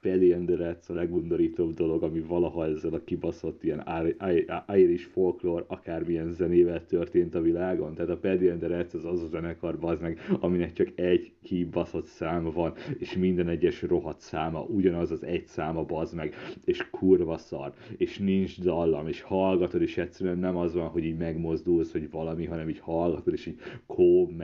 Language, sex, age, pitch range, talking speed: Hungarian, male, 30-49, 85-100 Hz, 165 wpm